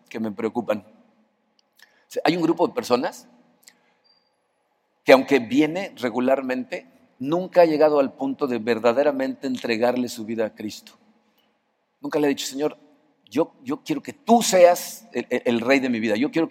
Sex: male